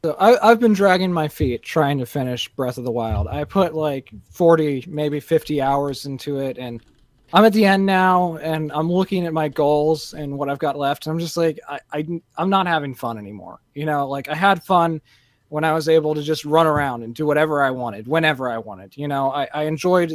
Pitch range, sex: 135-165 Hz, male